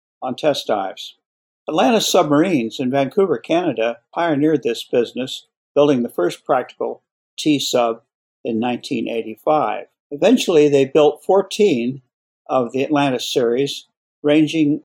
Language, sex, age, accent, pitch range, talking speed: English, male, 60-79, American, 130-195 Hz, 110 wpm